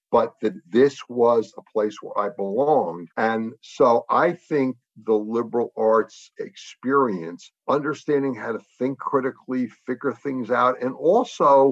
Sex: male